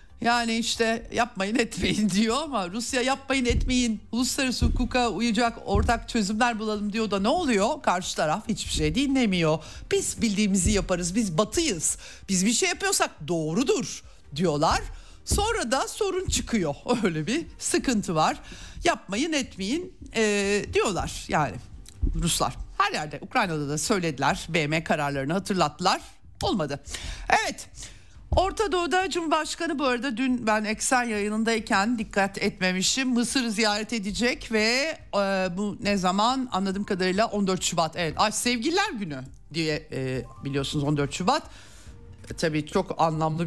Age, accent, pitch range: 60-79, native, 175-245 Hz